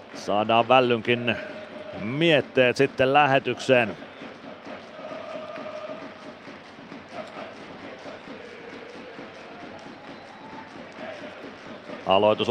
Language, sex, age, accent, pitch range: Finnish, male, 30-49, native, 115-130 Hz